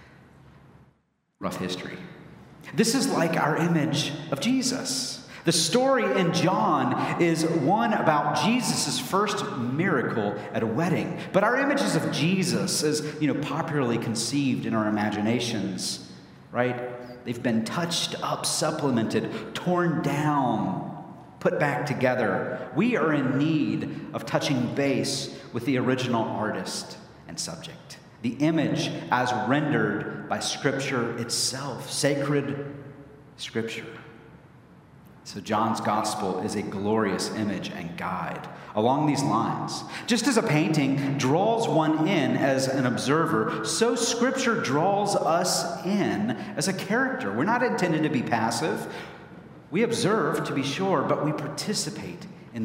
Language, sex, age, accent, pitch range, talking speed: English, male, 40-59, American, 125-170 Hz, 130 wpm